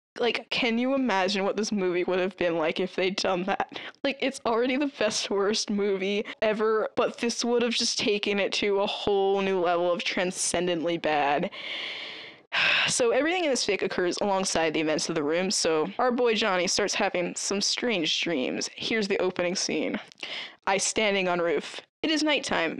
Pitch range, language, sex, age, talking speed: 185-230 Hz, English, female, 10-29, 185 wpm